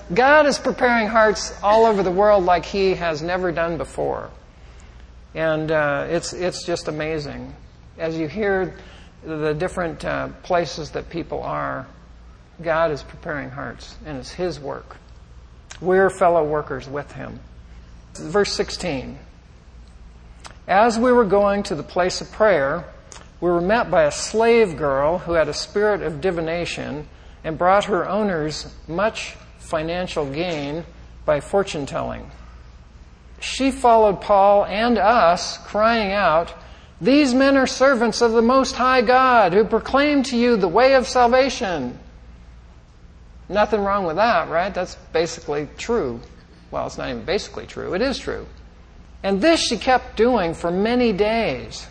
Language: English